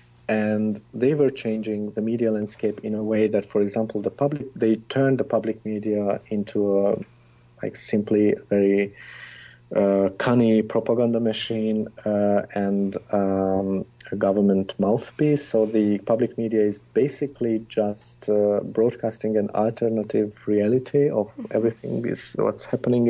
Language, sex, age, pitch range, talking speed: English, male, 50-69, 105-120 Hz, 140 wpm